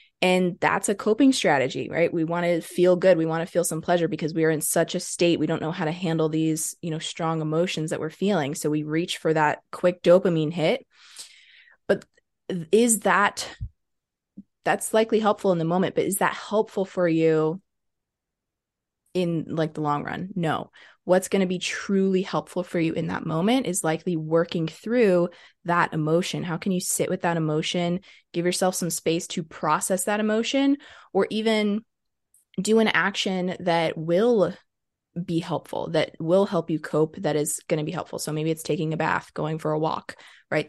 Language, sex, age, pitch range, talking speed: English, female, 20-39, 160-195 Hz, 195 wpm